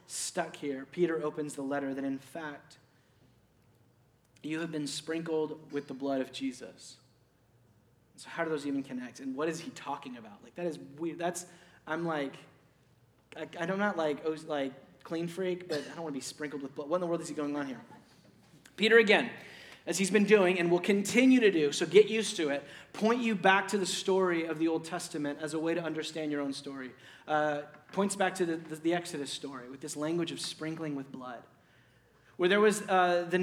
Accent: American